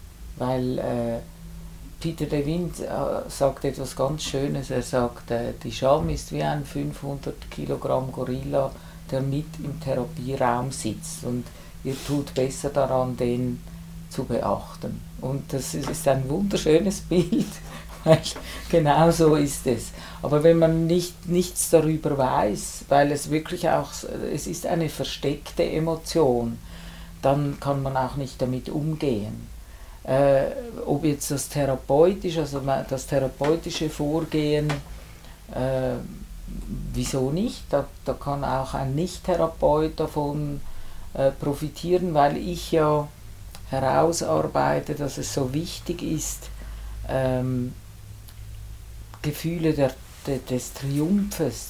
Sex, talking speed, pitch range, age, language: female, 120 wpm, 125-155 Hz, 50-69, German